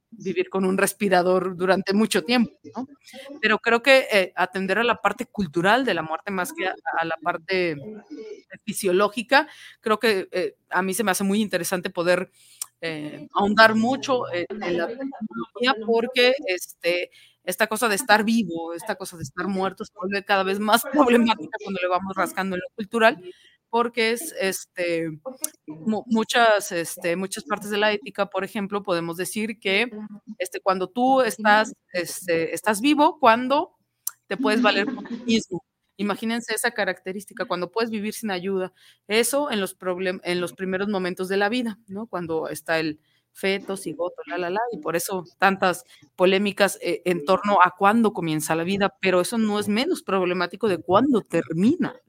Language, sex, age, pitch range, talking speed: Spanish, female, 30-49, 180-225 Hz, 170 wpm